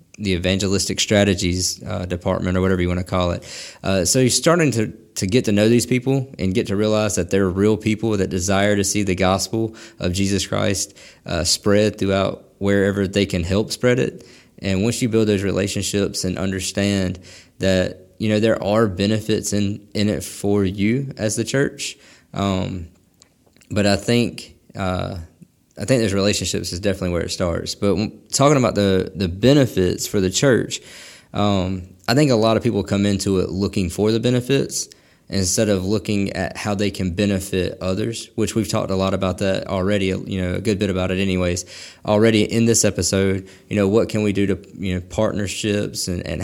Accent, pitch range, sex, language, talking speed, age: American, 95-110 Hz, male, English, 195 wpm, 20-39